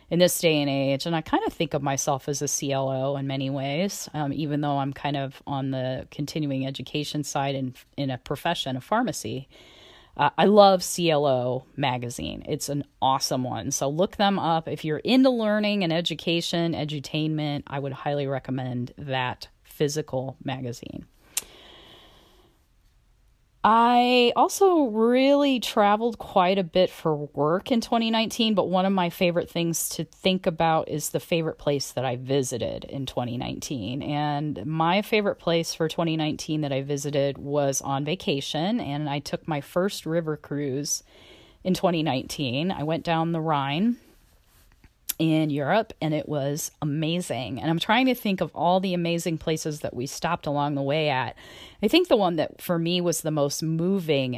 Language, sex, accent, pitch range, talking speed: English, female, American, 140-175 Hz, 165 wpm